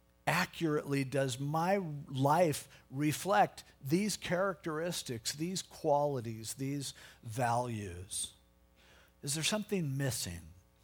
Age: 50-69